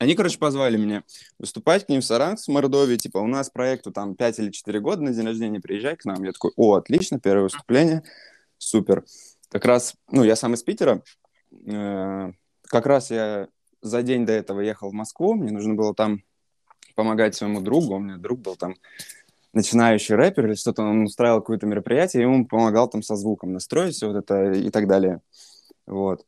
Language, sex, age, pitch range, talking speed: Russian, male, 20-39, 105-135 Hz, 185 wpm